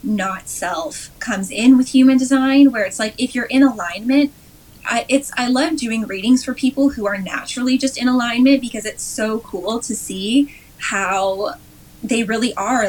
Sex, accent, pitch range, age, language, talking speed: female, American, 200-255 Hz, 10-29, English, 175 wpm